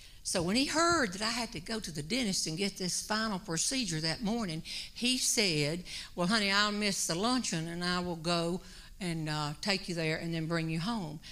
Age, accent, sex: 60-79, American, female